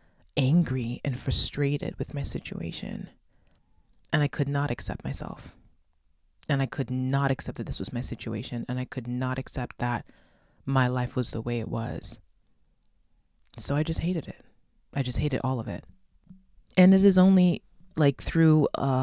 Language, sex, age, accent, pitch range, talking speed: English, female, 20-39, American, 120-145 Hz, 165 wpm